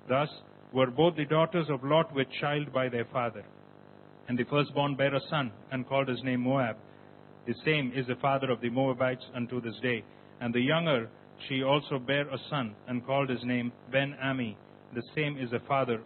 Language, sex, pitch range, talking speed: English, male, 120-140 Hz, 195 wpm